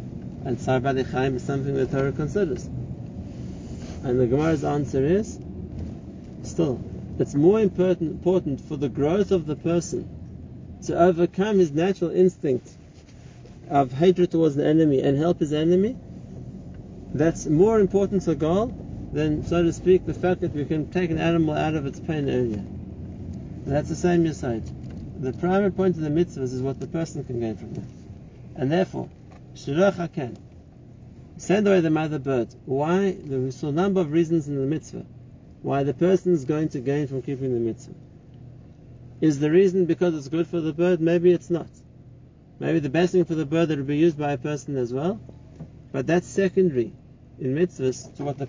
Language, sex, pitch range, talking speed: English, male, 130-175 Hz, 175 wpm